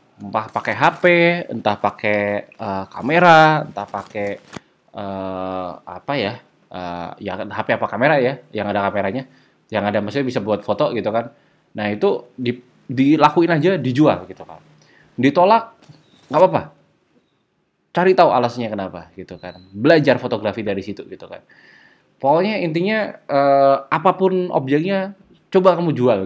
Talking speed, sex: 135 wpm, male